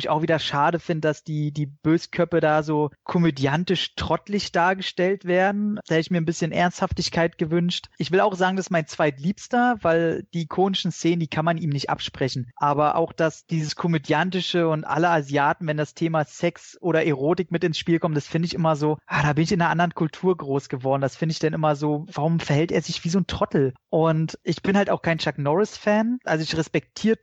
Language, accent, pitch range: German, German, 150-175 Hz